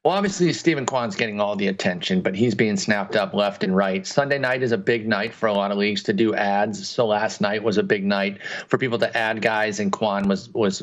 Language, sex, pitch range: English, male, 115-155 Hz